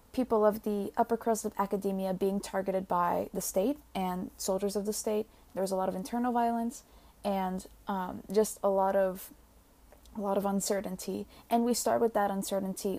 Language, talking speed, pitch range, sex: English, 185 wpm, 190-220 Hz, female